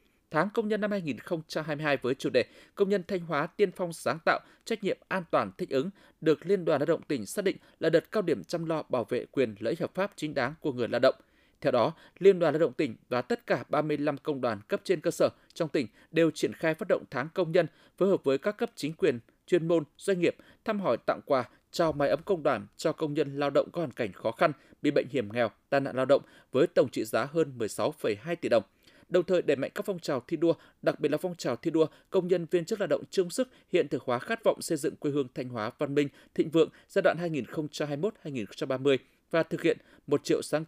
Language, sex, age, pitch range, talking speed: Vietnamese, male, 20-39, 145-185 Hz, 250 wpm